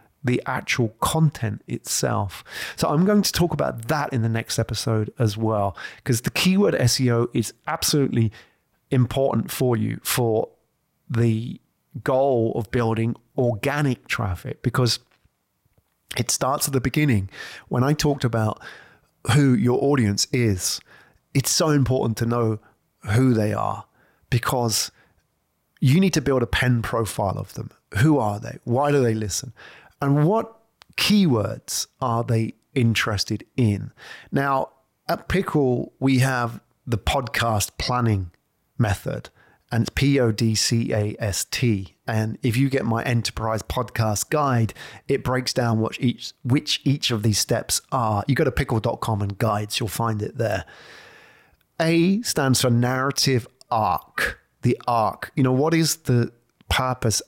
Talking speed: 135 wpm